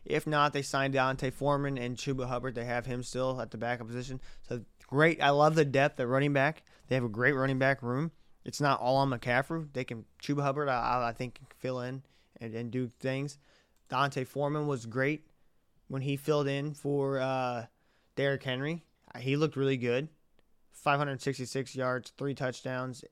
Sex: male